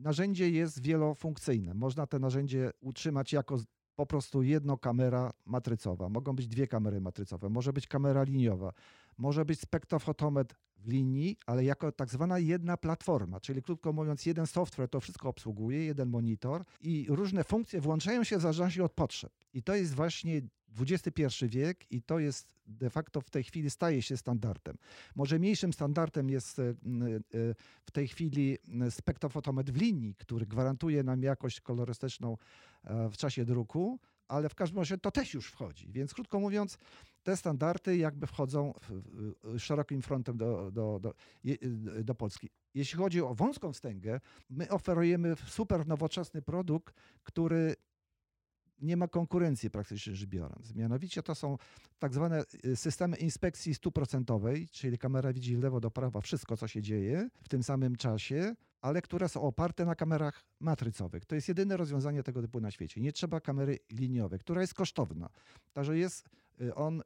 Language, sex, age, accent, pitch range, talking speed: Polish, male, 50-69, native, 120-165 Hz, 155 wpm